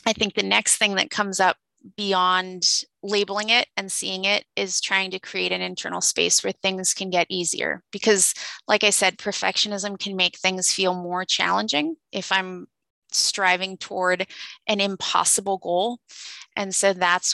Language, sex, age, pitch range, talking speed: English, female, 30-49, 170-205 Hz, 165 wpm